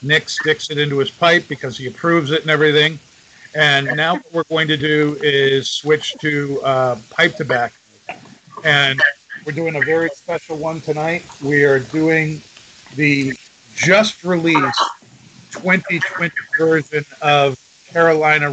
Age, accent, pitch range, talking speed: 50-69, American, 145-165 Hz, 135 wpm